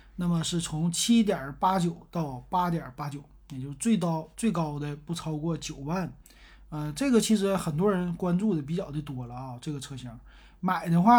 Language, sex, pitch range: Chinese, male, 150-190 Hz